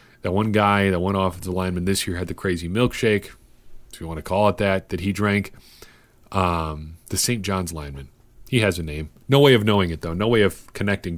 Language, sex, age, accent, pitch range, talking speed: English, male, 30-49, American, 90-115 Hz, 225 wpm